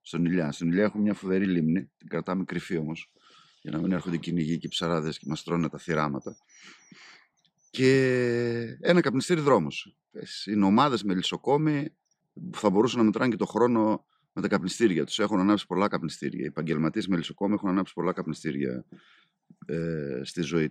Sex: male